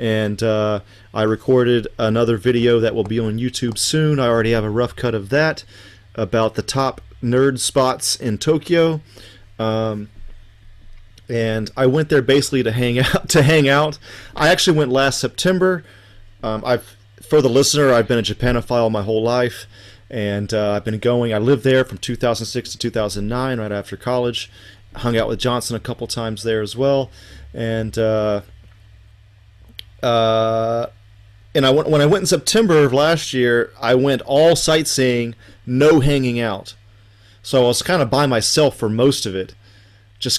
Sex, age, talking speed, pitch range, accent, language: male, 30-49, 165 wpm, 105-130 Hz, American, English